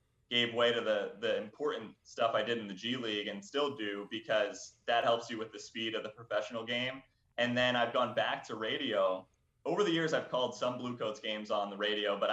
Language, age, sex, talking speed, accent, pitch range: English, 30-49, male, 225 wpm, American, 110-135 Hz